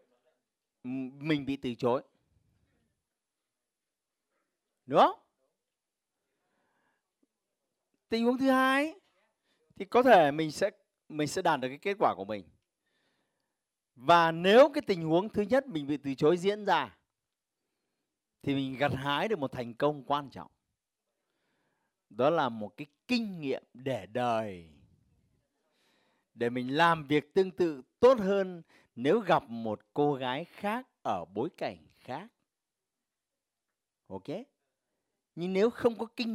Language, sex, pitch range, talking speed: Vietnamese, male, 125-205 Hz, 130 wpm